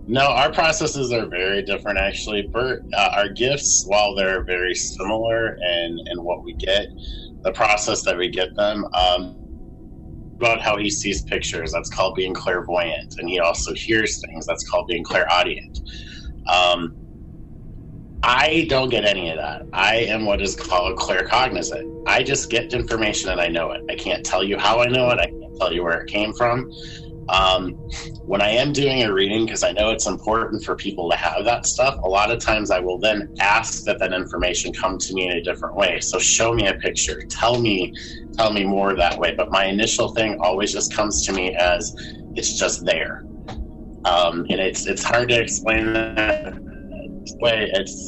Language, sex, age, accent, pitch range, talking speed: English, male, 30-49, American, 90-110 Hz, 190 wpm